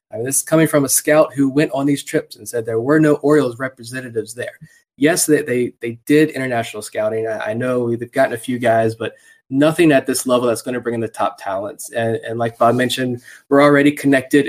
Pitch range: 115-140 Hz